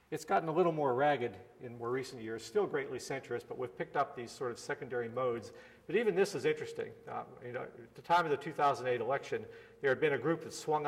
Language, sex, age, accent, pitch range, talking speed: English, male, 50-69, American, 120-185 Hz, 230 wpm